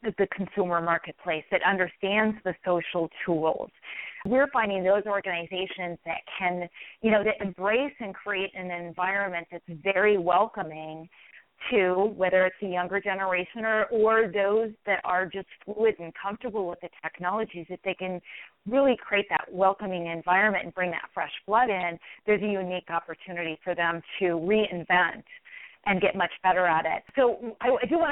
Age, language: 30-49, English